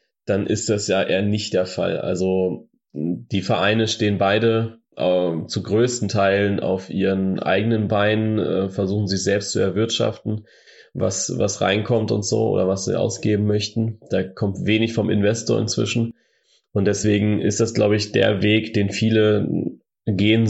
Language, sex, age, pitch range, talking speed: Persian, male, 20-39, 95-110 Hz, 160 wpm